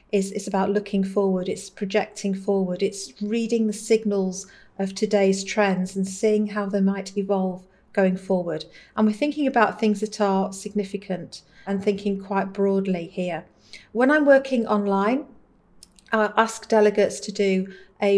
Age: 50-69